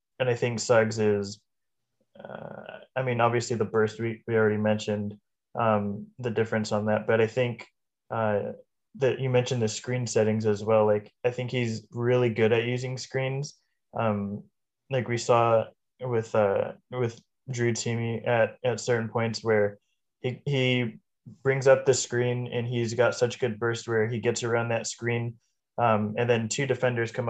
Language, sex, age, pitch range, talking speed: English, male, 20-39, 110-120 Hz, 175 wpm